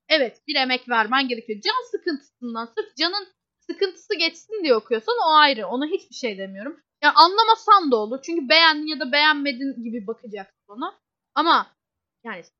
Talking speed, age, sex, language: 160 wpm, 10-29, female, Turkish